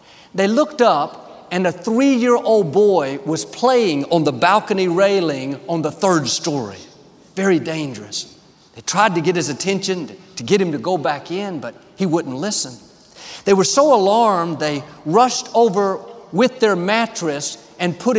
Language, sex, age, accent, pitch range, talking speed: English, male, 50-69, American, 165-220 Hz, 160 wpm